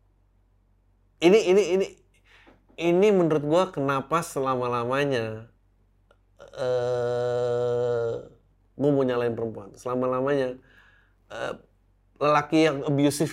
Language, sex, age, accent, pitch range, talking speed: Indonesian, male, 20-39, native, 115-170 Hz, 85 wpm